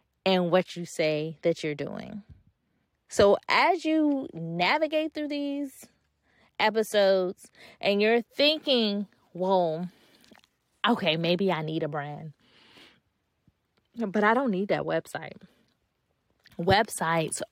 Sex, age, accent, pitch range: female, 20-39, American, 165-215 Hz